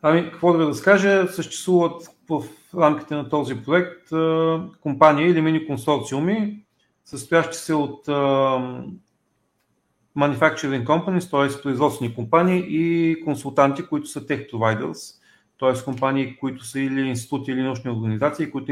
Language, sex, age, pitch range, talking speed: Bulgarian, male, 40-59, 130-160 Hz, 125 wpm